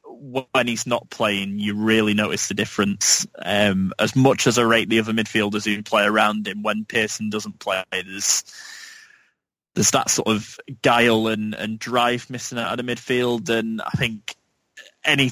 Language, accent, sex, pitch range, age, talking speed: English, British, male, 105-115 Hz, 20-39, 170 wpm